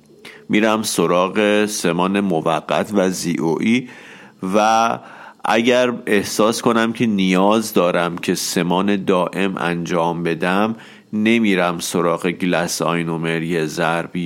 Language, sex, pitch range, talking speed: Persian, male, 85-105 Hz, 95 wpm